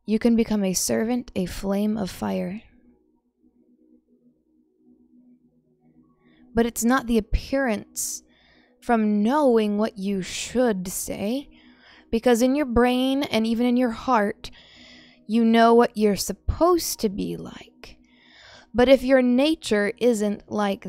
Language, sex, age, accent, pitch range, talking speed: English, female, 20-39, American, 190-240 Hz, 125 wpm